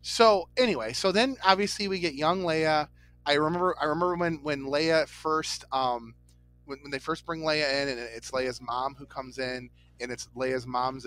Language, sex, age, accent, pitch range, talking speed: English, male, 30-49, American, 115-150 Hz, 195 wpm